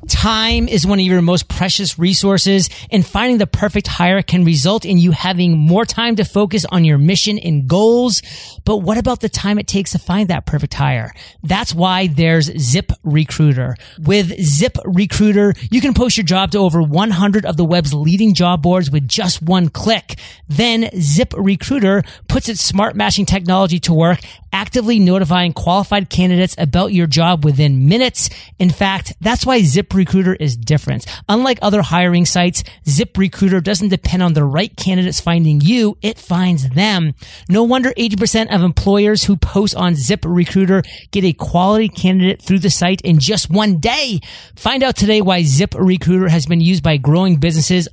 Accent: American